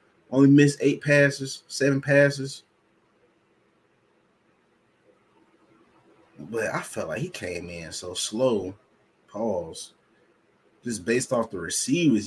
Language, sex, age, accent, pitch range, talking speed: English, male, 30-49, American, 100-125 Hz, 105 wpm